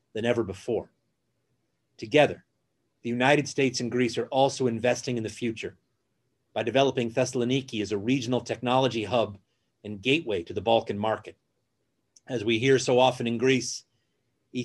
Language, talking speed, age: English, 150 wpm, 40-59